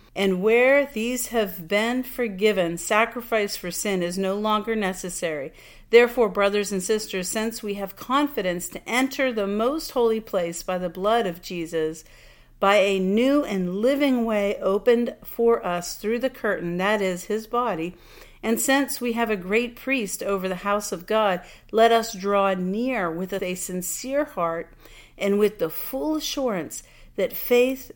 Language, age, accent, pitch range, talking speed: English, 50-69, American, 185-235 Hz, 160 wpm